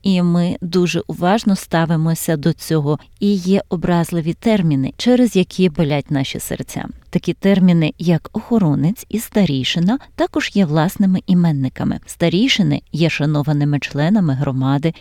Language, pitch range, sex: Ukrainian, 155-205 Hz, female